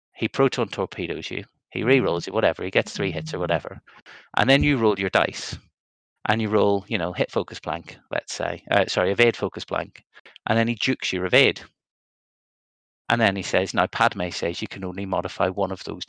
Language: English